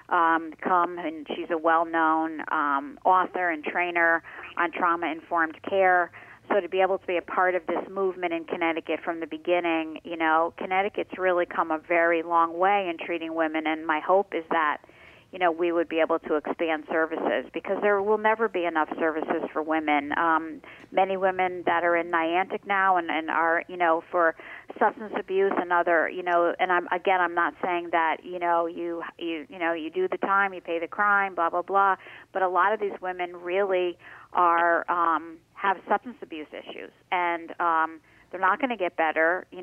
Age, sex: 40-59, female